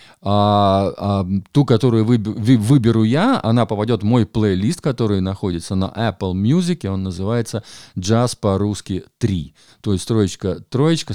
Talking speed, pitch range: 135 wpm, 100-125 Hz